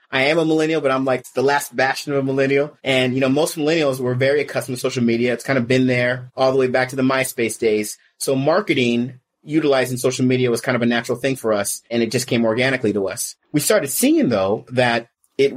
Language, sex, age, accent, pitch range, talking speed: English, male, 30-49, American, 120-140 Hz, 245 wpm